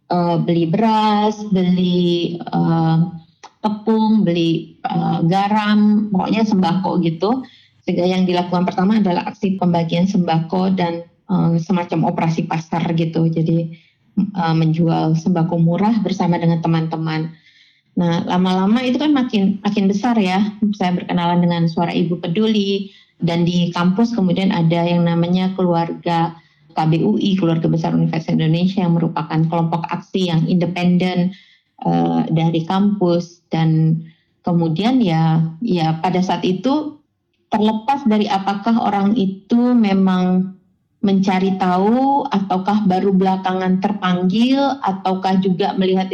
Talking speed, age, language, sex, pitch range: 120 wpm, 20-39, Indonesian, female, 170-200 Hz